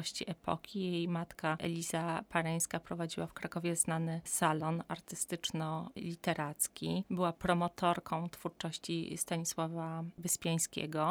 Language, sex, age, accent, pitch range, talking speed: Polish, female, 30-49, native, 165-180 Hz, 80 wpm